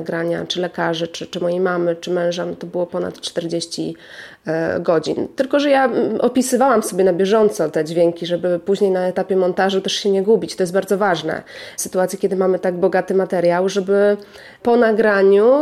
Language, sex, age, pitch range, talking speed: Polish, female, 30-49, 185-220 Hz, 175 wpm